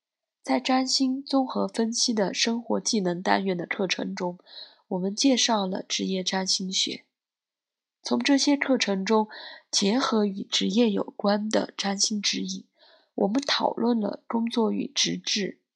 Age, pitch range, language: 20-39, 195-260 Hz, Chinese